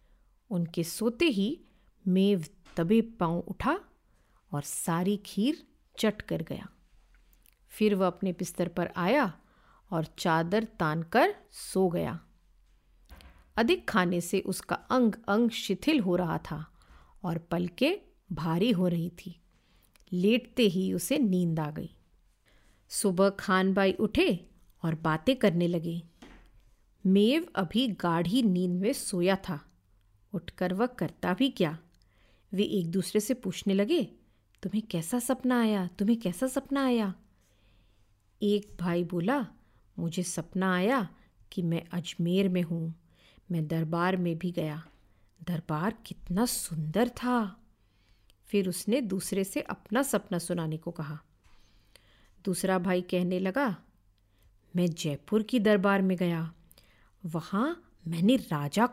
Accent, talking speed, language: native, 125 wpm, Hindi